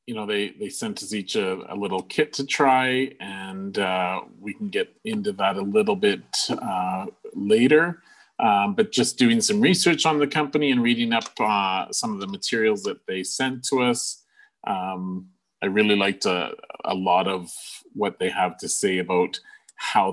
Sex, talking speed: male, 185 wpm